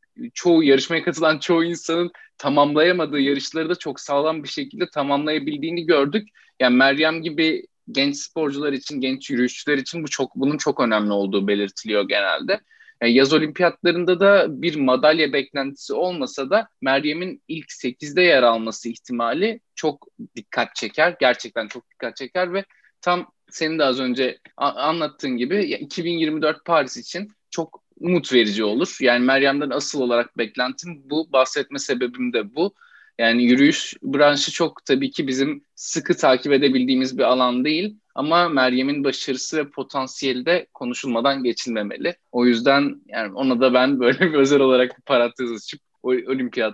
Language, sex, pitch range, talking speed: Turkish, male, 125-165 Hz, 145 wpm